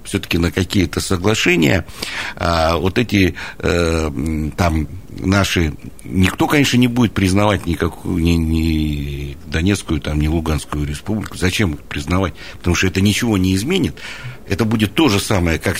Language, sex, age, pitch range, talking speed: Russian, male, 60-79, 80-105 Hz, 145 wpm